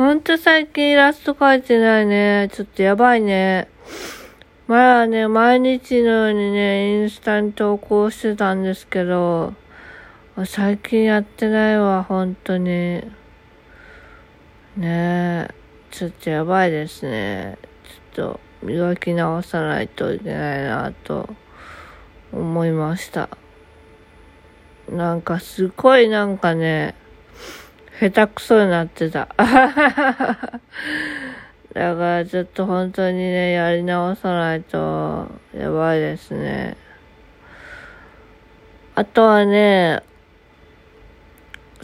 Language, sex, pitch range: Japanese, female, 175-230 Hz